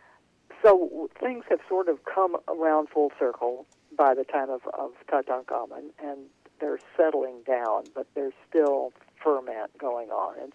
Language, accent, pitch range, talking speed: English, American, 135-185 Hz, 155 wpm